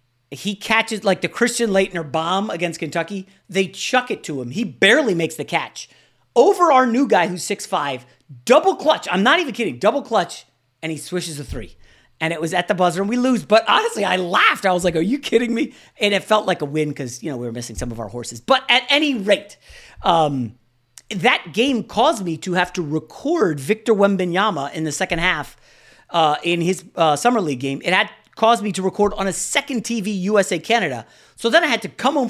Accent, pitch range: American, 135-205 Hz